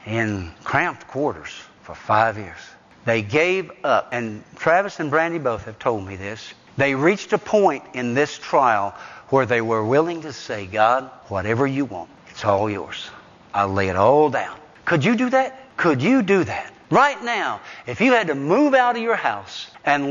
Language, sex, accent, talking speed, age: English, male, American, 190 wpm, 60-79